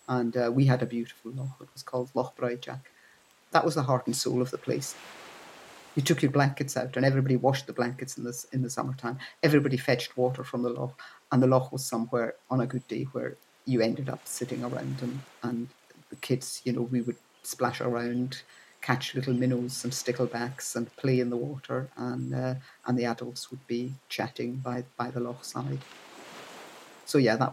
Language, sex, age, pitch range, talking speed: English, female, 50-69, 125-140 Hz, 205 wpm